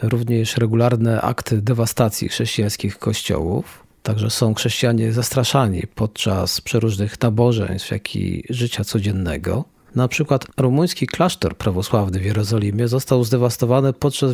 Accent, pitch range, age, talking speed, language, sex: native, 105-130 Hz, 40-59, 115 wpm, Polish, male